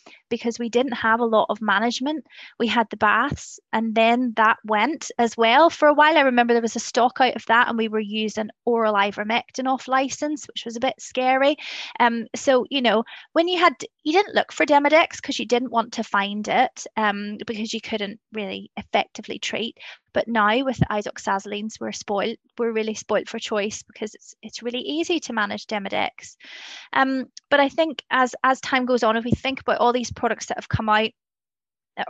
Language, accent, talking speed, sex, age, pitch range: English, British, 210 wpm, female, 20-39, 215-260 Hz